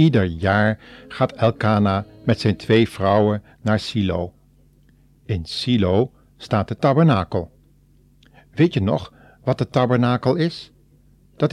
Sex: male